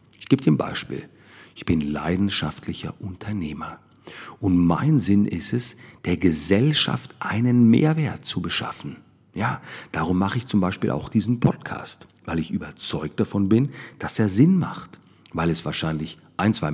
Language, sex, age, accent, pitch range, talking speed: German, male, 50-69, German, 85-120 Hz, 155 wpm